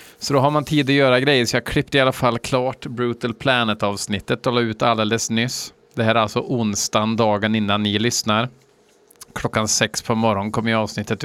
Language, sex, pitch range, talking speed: Swedish, male, 110-135 Hz, 195 wpm